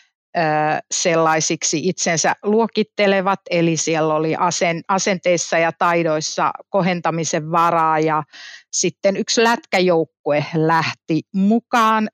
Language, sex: Finnish, female